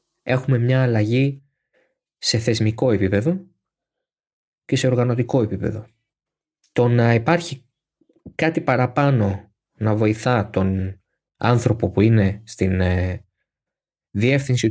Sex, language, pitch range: male, Greek, 100-130 Hz